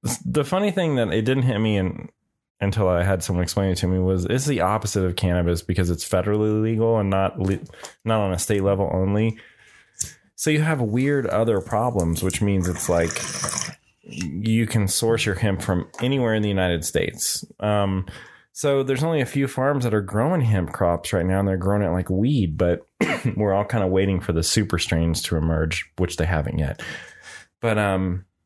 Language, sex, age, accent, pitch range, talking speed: English, male, 20-39, American, 85-110 Hz, 200 wpm